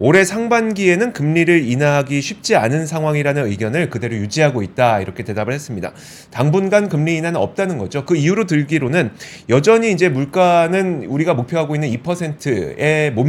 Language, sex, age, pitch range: Korean, male, 30-49, 135-190 Hz